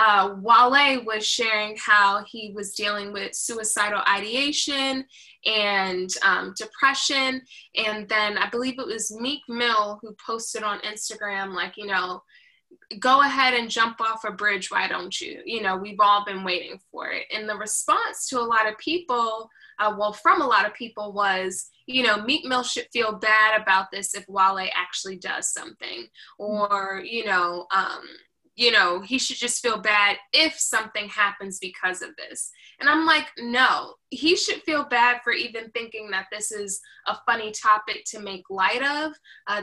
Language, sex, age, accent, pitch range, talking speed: English, female, 10-29, American, 200-245 Hz, 175 wpm